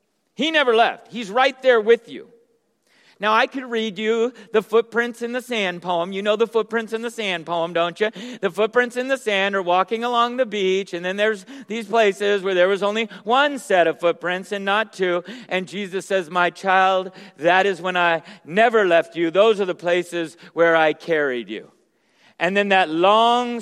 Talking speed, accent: 200 wpm, American